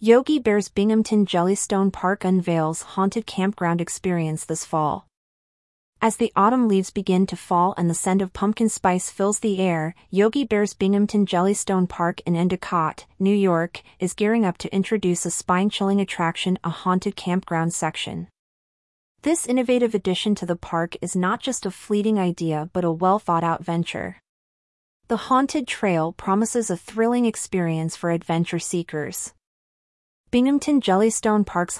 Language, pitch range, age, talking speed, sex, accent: English, 170-210 Hz, 30-49, 150 wpm, female, American